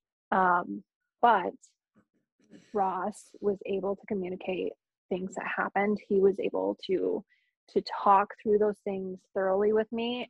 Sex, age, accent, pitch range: female, 20-39, American, 190-230 Hz